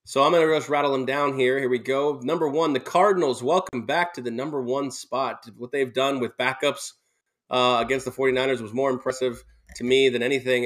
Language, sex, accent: English, male, American